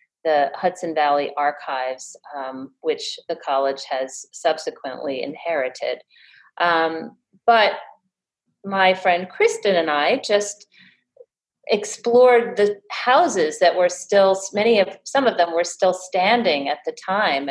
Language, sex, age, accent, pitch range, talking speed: English, female, 40-59, American, 160-225 Hz, 125 wpm